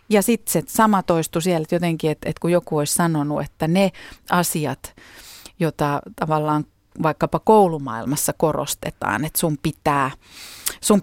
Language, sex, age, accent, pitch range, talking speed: Finnish, female, 40-59, native, 150-180 Hz, 145 wpm